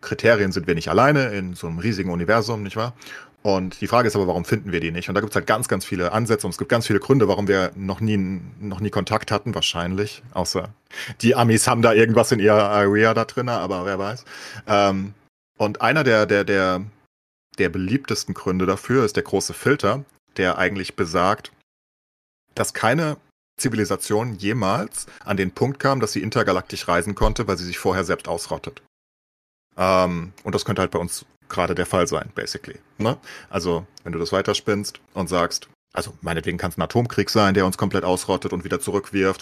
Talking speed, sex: 195 wpm, male